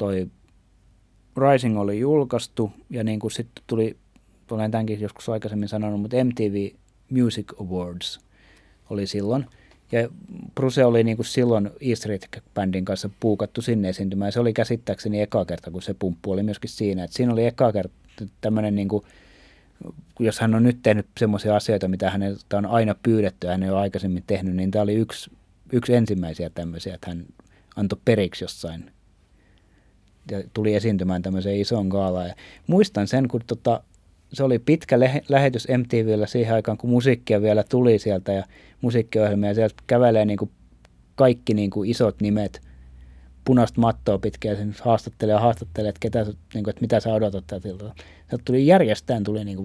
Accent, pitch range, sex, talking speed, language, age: native, 95-115 Hz, male, 160 wpm, Finnish, 30-49